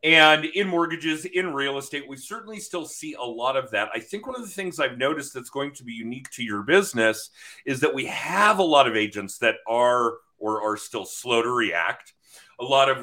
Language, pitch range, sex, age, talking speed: English, 120-175 Hz, male, 40-59, 225 wpm